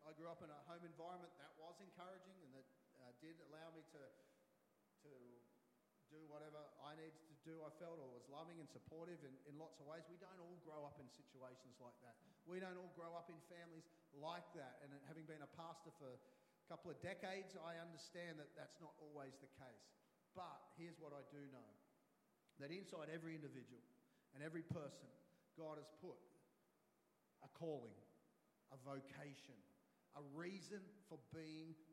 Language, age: English, 40-59